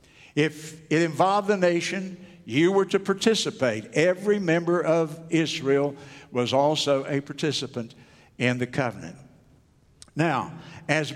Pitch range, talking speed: 130-175 Hz, 120 wpm